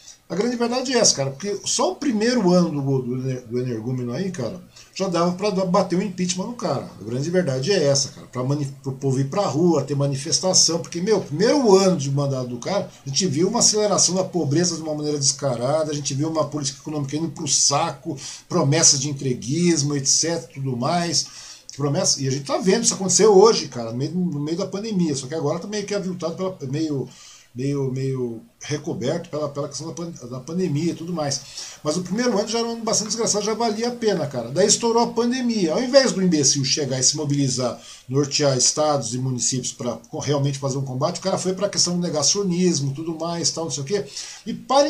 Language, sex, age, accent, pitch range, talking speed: Portuguese, male, 50-69, Brazilian, 140-185 Hz, 220 wpm